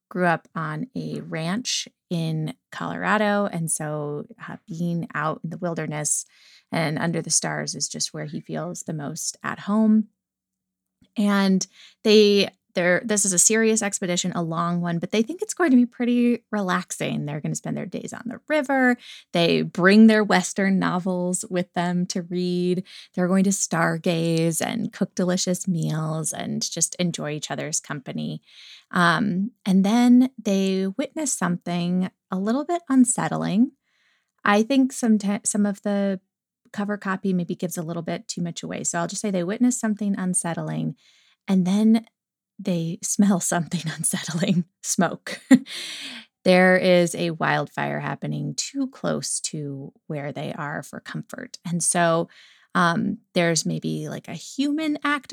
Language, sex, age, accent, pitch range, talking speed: English, female, 20-39, American, 170-220 Hz, 155 wpm